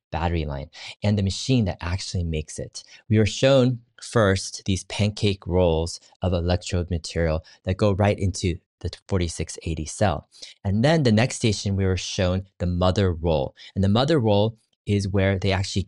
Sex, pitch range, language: male, 90-115 Hz, English